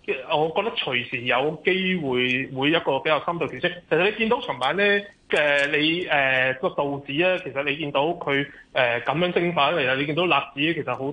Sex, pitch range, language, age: male, 135-180 Hz, Chinese, 20-39